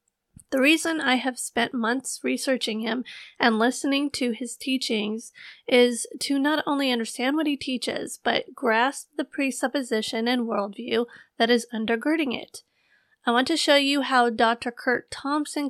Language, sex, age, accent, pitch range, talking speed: English, female, 30-49, American, 230-275 Hz, 155 wpm